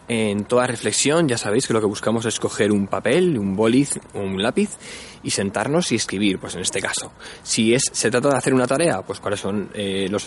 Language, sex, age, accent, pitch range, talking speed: Spanish, male, 20-39, Spanish, 105-125 Hz, 220 wpm